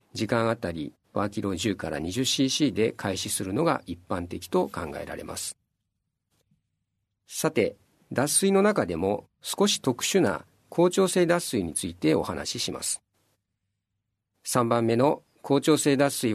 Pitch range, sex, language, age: 100-150 Hz, male, Japanese, 50-69